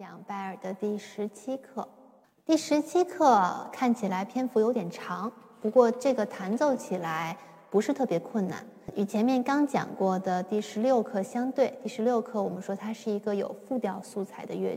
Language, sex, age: Chinese, female, 20-39